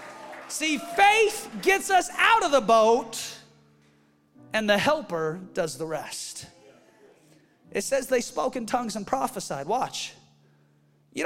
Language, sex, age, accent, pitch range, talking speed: English, male, 30-49, American, 200-335 Hz, 130 wpm